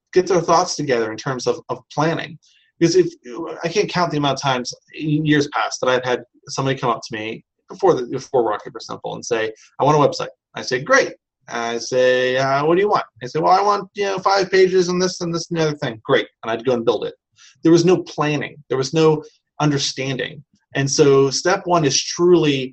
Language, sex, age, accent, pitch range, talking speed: English, male, 30-49, American, 135-165 Hz, 235 wpm